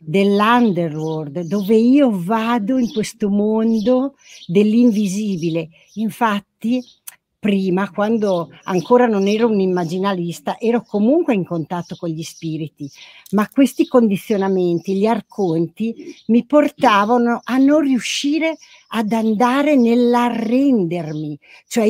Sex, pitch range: female, 185-240 Hz